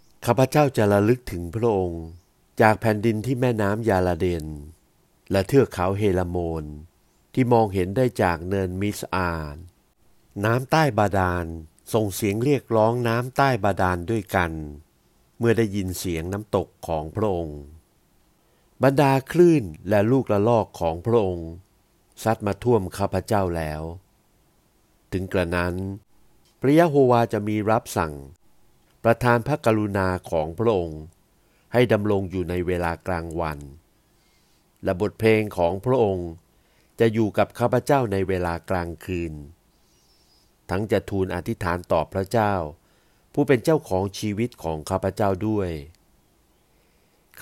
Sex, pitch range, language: male, 90-115 Hz, Thai